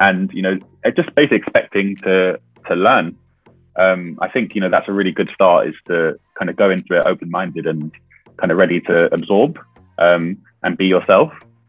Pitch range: 90-100 Hz